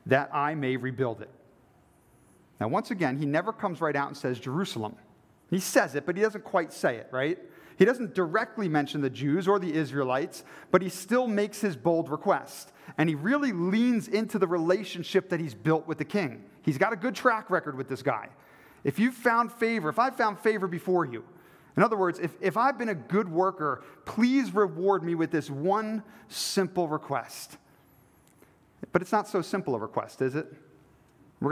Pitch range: 145-205 Hz